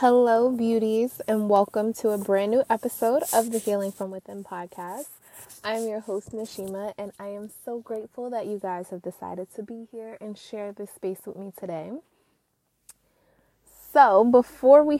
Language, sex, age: English, female, 20-39